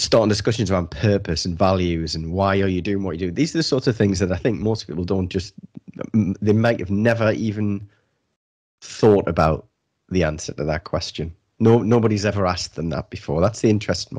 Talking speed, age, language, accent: 205 wpm, 20-39, English, British